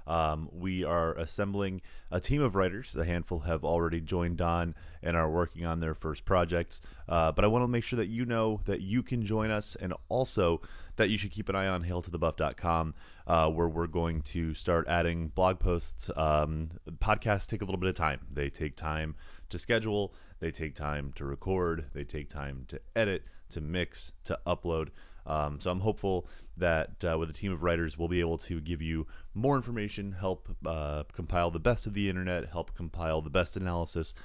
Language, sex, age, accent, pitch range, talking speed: English, male, 30-49, American, 75-95 Hz, 200 wpm